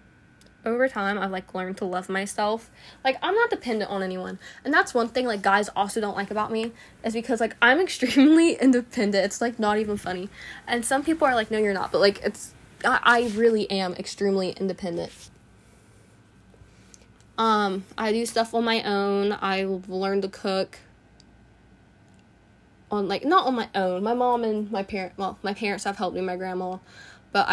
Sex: female